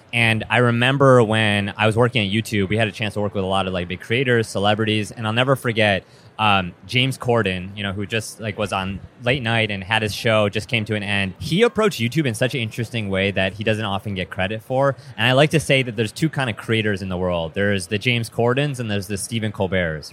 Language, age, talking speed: English, 30-49, 255 wpm